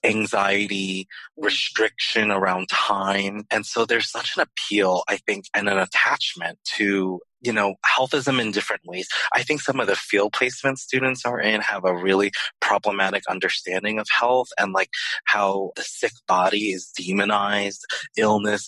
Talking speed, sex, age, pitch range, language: 155 wpm, male, 20-39, 95-115 Hz, English